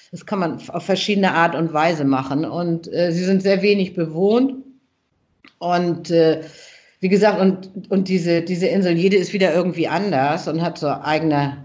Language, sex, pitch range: German, female, 155-180 Hz